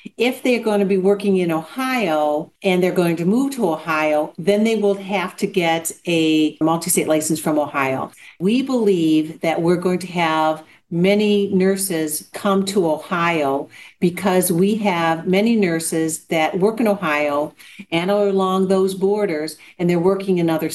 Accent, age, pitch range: American, 50-69, 165-195 Hz